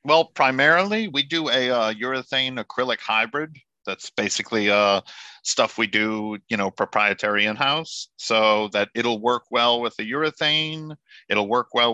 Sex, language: male, English